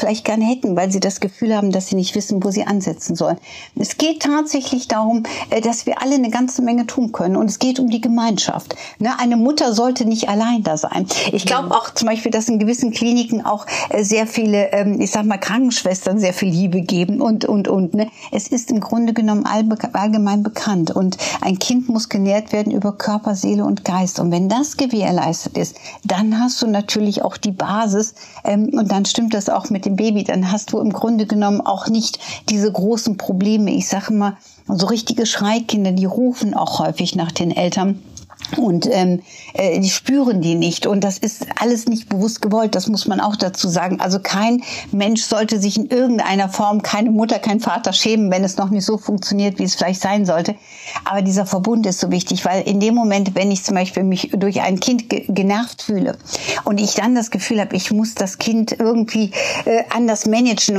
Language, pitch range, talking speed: German, 200-230 Hz, 200 wpm